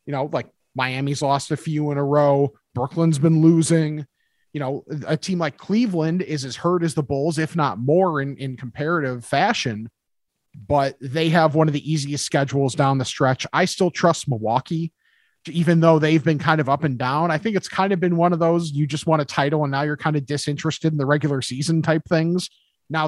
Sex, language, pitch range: male, English, 140-175 Hz